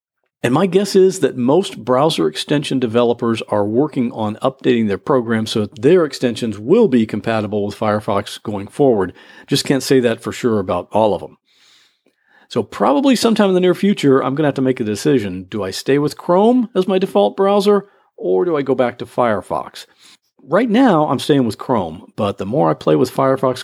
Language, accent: English, American